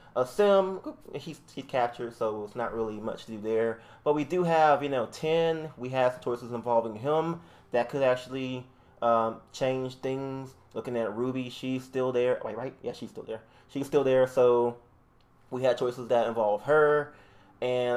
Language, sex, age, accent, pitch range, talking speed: English, male, 20-39, American, 110-130 Hz, 185 wpm